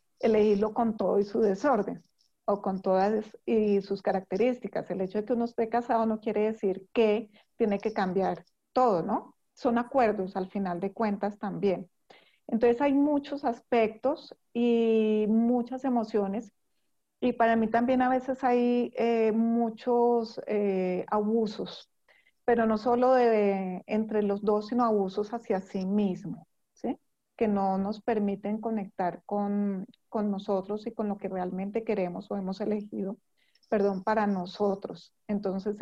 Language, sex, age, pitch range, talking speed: Spanish, female, 40-59, 200-235 Hz, 145 wpm